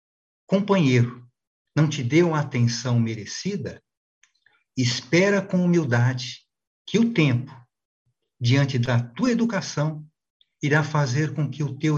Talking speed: 115 wpm